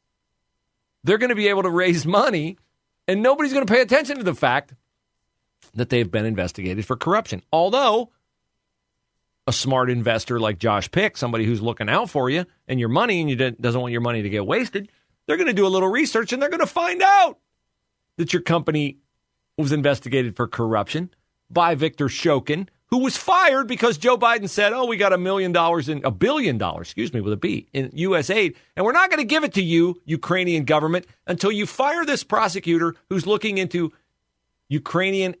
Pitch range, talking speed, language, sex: 120-195 Hz, 195 wpm, English, male